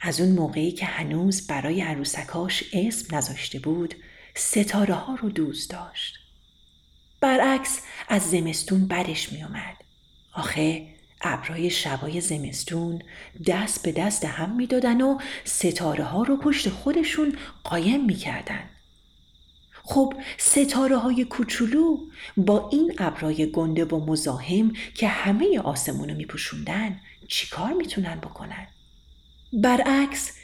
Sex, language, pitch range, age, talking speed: female, Persian, 155-240 Hz, 40-59, 110 wpm